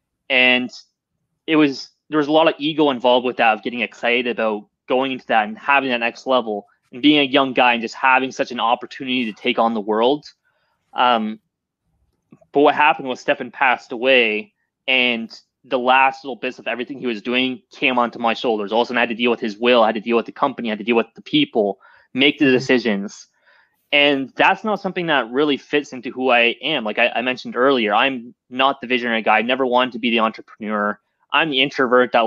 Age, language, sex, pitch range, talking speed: 20-39, English, male, 115-135 Hz, 220 wpm